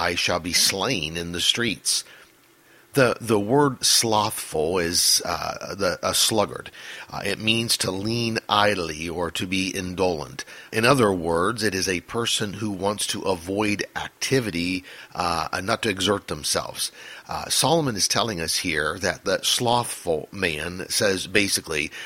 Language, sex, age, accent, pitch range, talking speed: English, male, 50-69, American, 95-120 Hz, 150 wpm